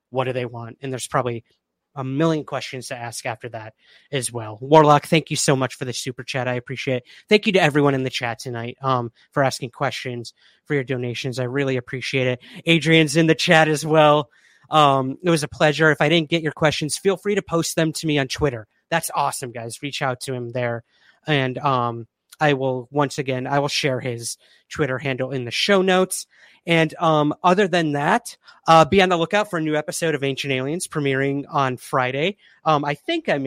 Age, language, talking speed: 30-49, English, 215 wpm